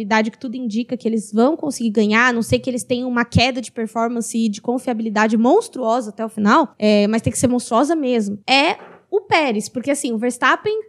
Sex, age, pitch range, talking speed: female, 10-29, 225-295 Hz, 210 wpm